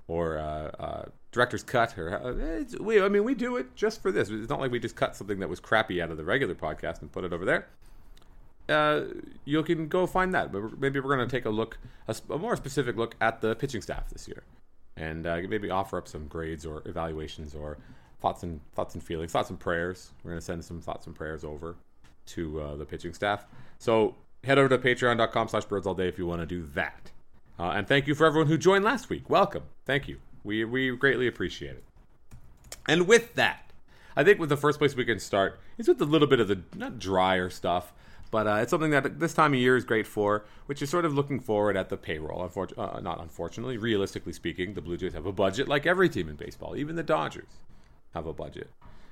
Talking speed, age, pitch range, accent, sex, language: 235 wpm, 30-49, 85-140 Hz, American, male, English